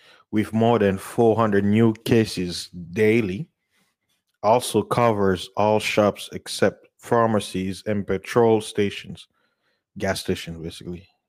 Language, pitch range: English, 100-120 Hz